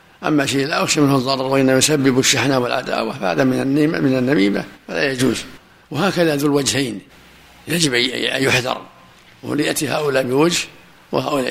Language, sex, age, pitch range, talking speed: Arabic, male, 60-79, 135-155 Hz, 130 wpm